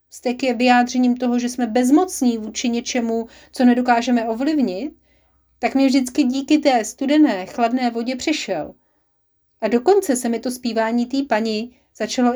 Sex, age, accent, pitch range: female, 30-49, native, 225-295 Hz